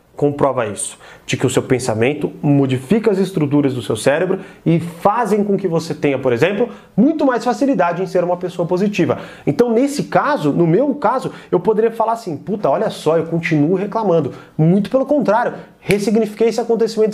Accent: Brazilian